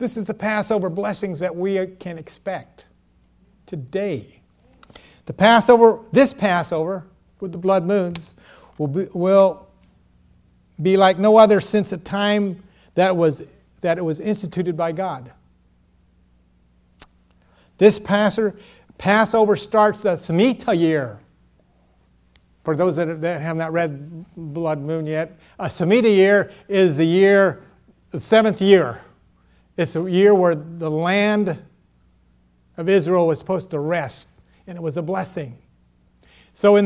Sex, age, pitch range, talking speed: male, 60-79, 150-210 Hz, 125 wpm